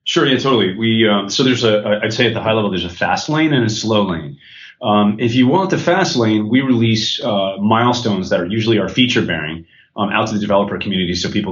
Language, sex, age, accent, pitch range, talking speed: English, male, 30-49, American, 90-120 Hz, 245 wpm